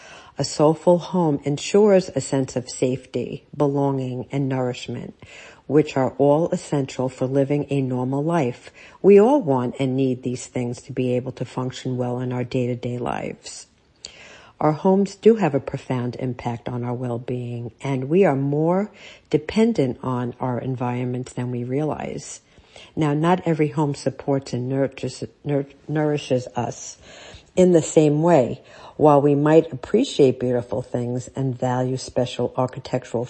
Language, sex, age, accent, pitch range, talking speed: English, female, 60-79, American, 125-170 Hz, 150 wpm